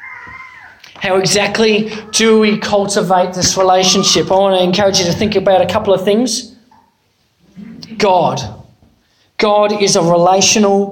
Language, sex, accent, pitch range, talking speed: English, male, Australian, 185-220 Hz, 130 wpm